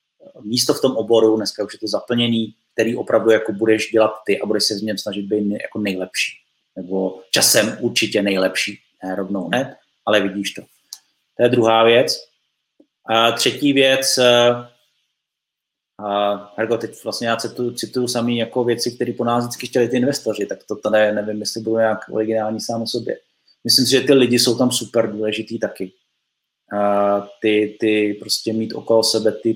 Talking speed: 170 wpm